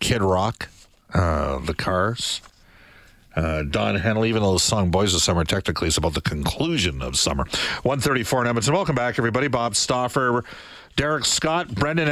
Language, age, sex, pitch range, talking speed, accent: English, 50-69, male, 100-140 Hz, 165 wpm, American